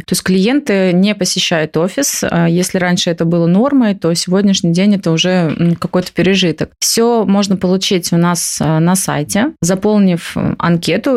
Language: Russian